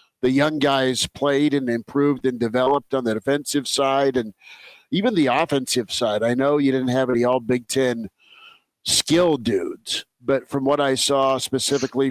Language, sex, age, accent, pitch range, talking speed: English, male, 50-69, American, 120-140 Hz, 170 wpm